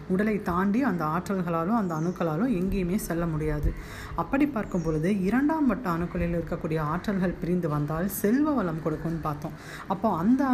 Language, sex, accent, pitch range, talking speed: Tamil, female, native, 170-230 Hz, 125 wpm